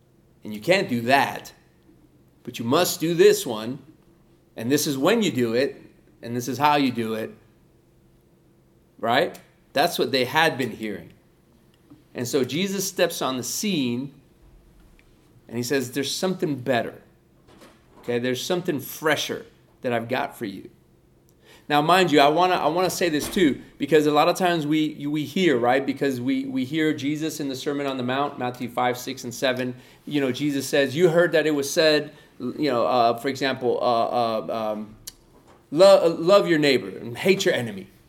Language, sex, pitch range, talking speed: English, male, 125-165 Hz, 185 wpm